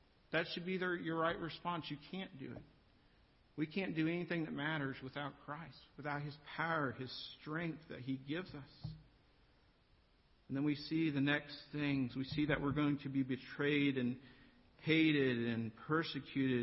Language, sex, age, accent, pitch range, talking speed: English, male, 50-69, American, 125-150 Hz, 170 wpm